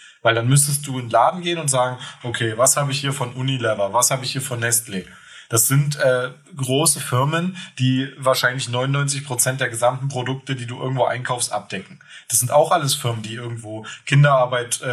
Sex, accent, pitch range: male, German, 115-140 Hz